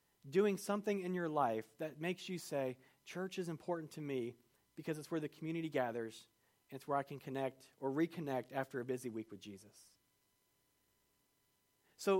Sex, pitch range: male, 135-180 Hz